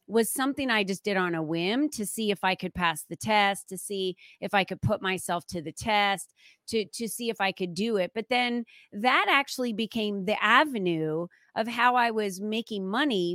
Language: English